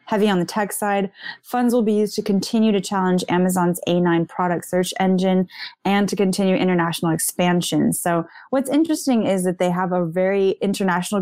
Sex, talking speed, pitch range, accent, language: female, 175 wpm, 175-210 Hz, American, English